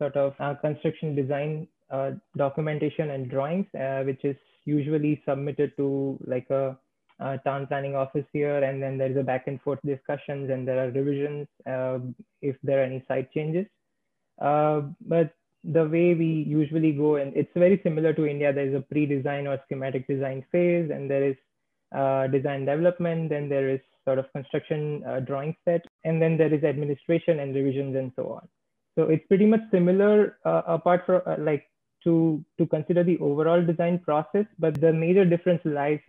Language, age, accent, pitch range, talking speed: English, 20-39, Indian, 140-160 Hz, 180 wpm